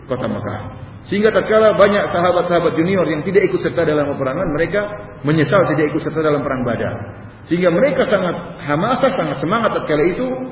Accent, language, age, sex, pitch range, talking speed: Indonesian, English, 40-59, male, 130-185 Hz, 165 wpm